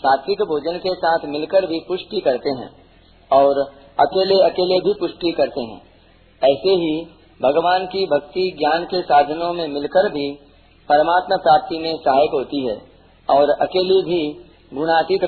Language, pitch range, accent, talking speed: Hindi, 140-185 Hz, native, 150 wpm